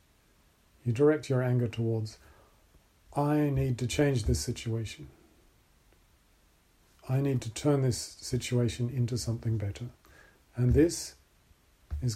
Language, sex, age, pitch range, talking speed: English, male, 40-59, 90-125 Hz, 115 wpm